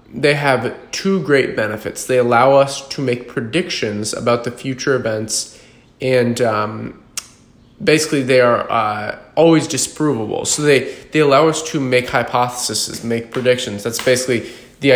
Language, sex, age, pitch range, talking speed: English, male, 20-39, 115-135 Hz, 145 wpm